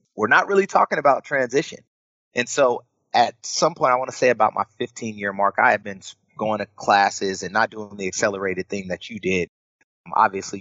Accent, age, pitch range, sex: American, 30-49, 95-120 Hz, male